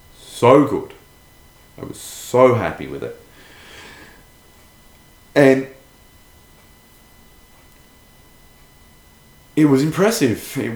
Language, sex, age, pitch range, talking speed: English, male, 30-49, 80-105 Hz, 75 wpm